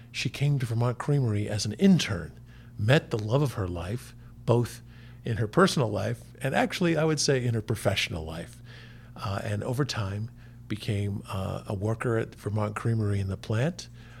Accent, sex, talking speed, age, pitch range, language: American, male, 175 wpm, 50-69, 105-125 Hz, English